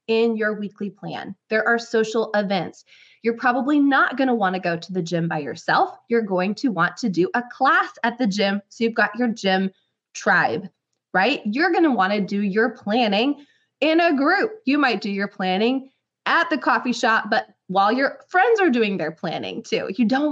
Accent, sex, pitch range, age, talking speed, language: American, female, 210-280 Hz, 20-39, 205 wpm, English